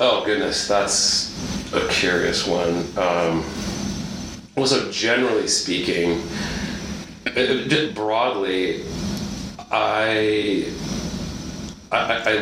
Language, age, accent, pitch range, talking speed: English, 30-49, American, 85-110 Hz, 70 wpm